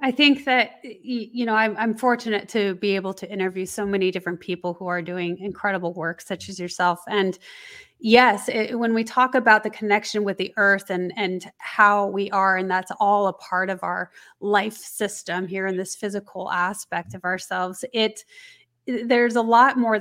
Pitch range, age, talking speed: 185-220 Hz, 30-49, 185 wpm